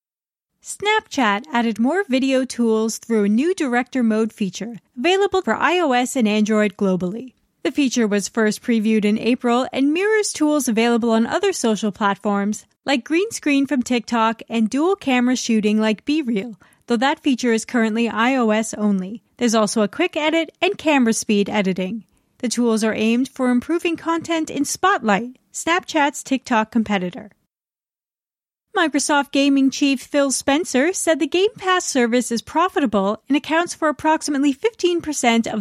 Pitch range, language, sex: 220-315 Hz, English, female